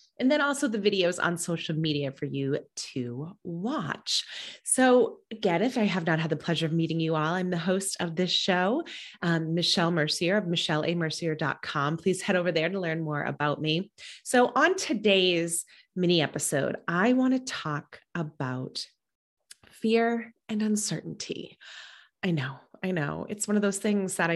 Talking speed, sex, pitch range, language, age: 170 wpm, female, 160-210 Hz, English, 30-49